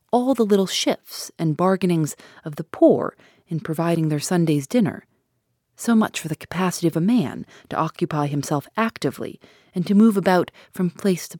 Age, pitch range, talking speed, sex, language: 30-49, 160-205 Hz, 175 wpm, female, English